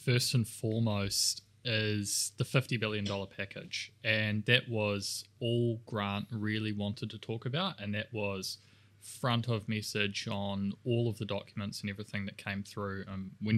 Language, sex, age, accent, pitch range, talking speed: English, male, 20-39, Australian, 105-125 Hz, 160 wpm